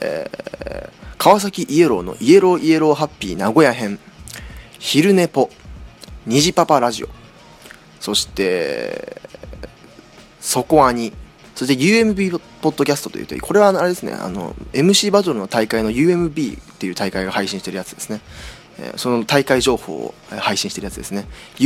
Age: 20-39